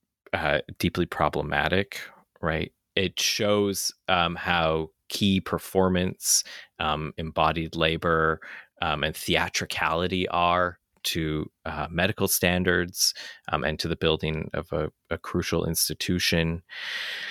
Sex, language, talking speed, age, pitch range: male, English, 105 wpm, 30-49, 85-105 Hz